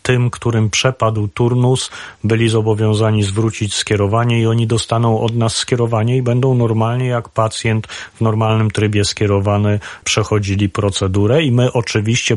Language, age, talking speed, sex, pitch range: Polish, 40-59, 135 wpm, male, 100-115 Hz